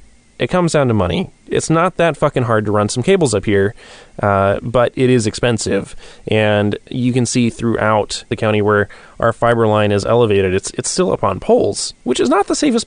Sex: male